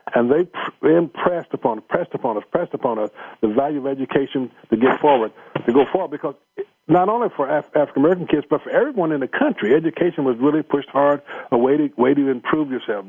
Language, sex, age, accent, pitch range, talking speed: English, male, 50-69, American, 125-150 Hz, 205 wpm